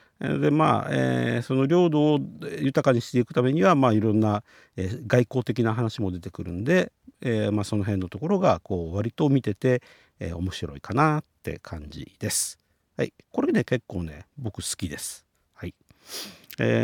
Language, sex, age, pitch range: Japanese, male, 50-69, 95-135 Hz